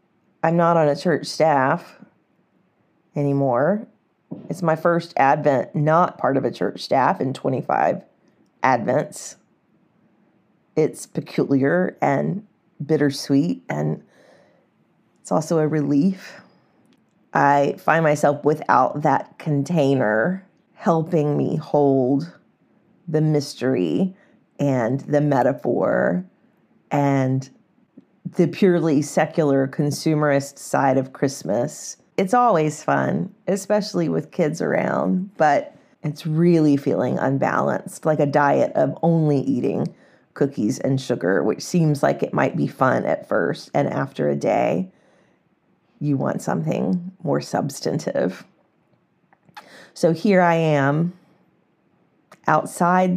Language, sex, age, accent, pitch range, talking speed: English, female, 40-59, American, 140-180 Hz, 105 wpm